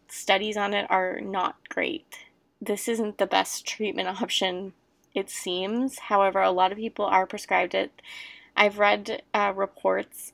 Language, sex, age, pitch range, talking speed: English, female, 20-39, 185-230 Hz, 150 wpm